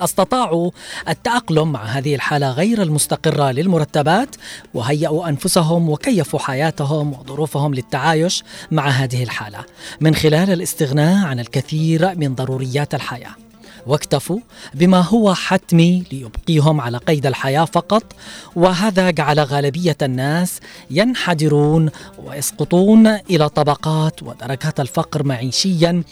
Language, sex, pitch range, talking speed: Arabic, female, 145-185 Hz, 105 wpm